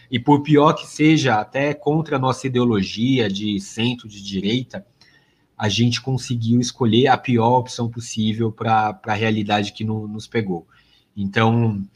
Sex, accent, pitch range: male, Brazilian, 105-125 Hz